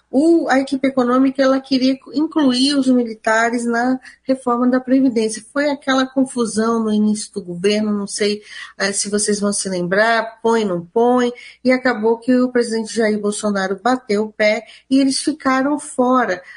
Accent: Brazilian